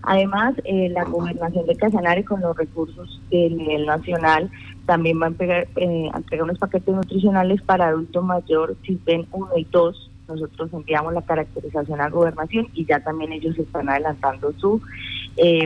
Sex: female